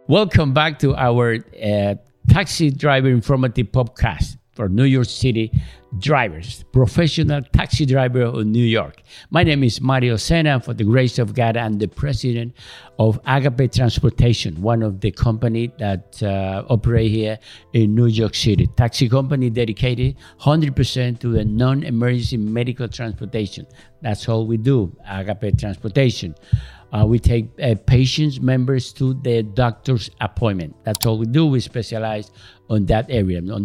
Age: 60-79